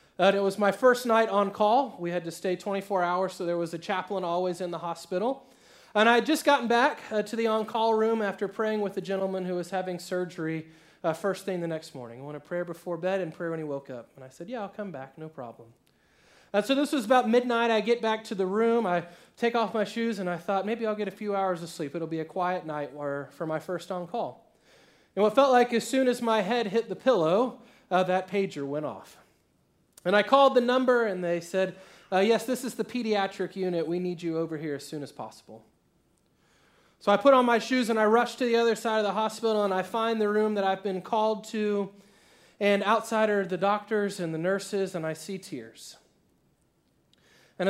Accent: American